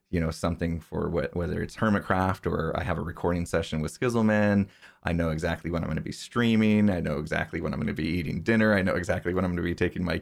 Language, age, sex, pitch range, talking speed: English, 20-39, male, 85-100 Hz, 265 wpm